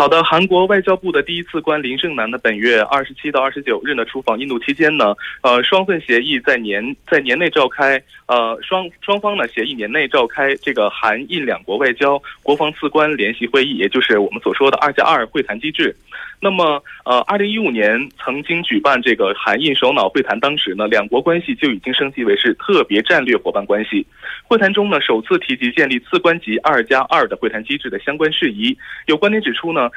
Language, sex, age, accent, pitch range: Korean, male, 20-39, Chinese, 140-205 Hz